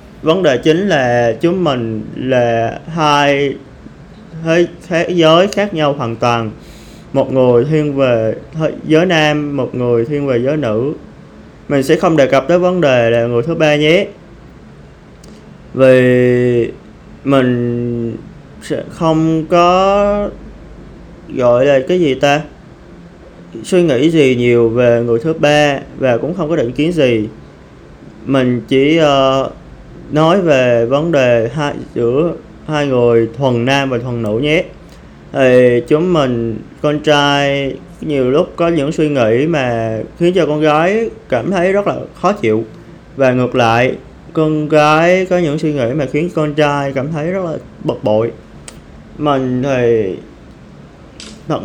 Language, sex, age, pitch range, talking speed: Vietnamese, male, 20-39, 120-160 Hz, 145 wpm